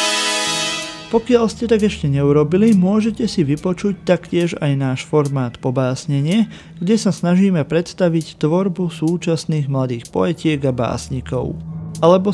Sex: male